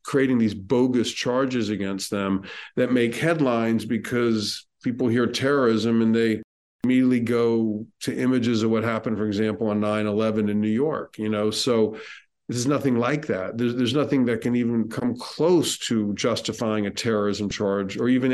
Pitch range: 110-140 Hz